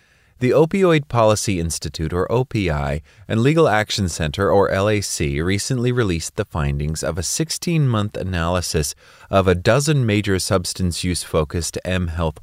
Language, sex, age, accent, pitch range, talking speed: English, male, 30-49, American, 80-105 Hz, 125 wpm